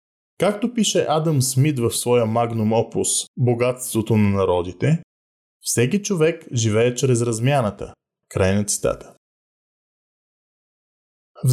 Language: Bulgarian